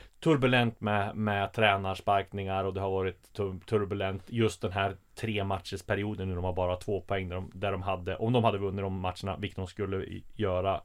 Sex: male